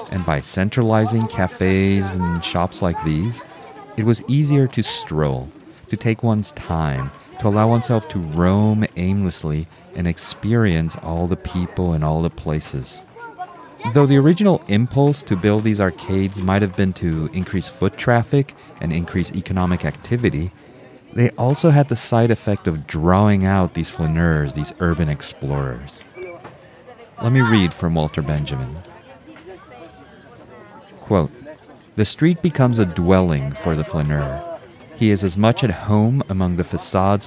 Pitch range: 85-115 Hz